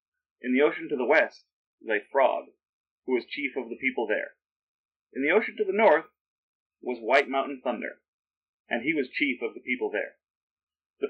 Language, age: English, 30-49